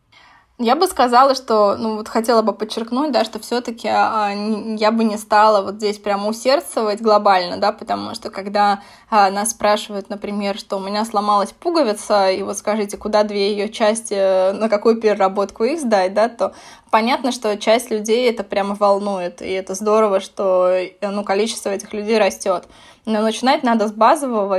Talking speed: 165 wpm